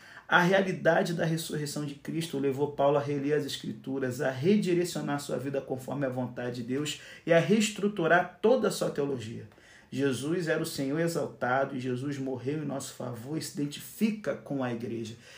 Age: 40-59